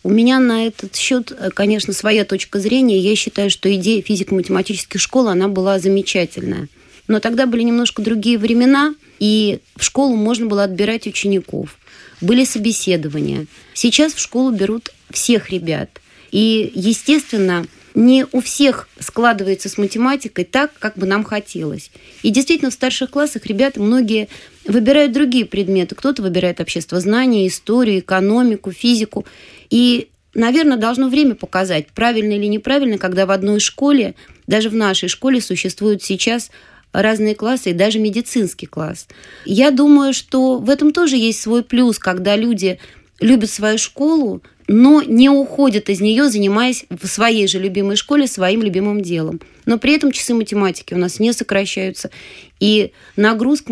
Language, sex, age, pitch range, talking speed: Russian, female, 20-39, 195-245 Hz, 145 wpm